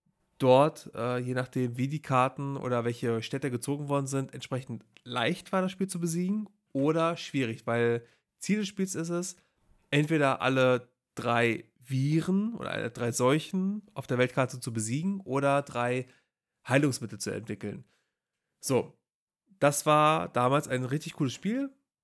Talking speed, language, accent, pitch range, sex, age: 145 wpm, German, German, 125-160 Hz, male, 30-49